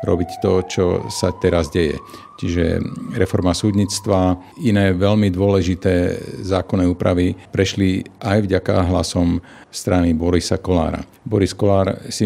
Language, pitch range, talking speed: Slovak, 85-95 Hz, 115 wpm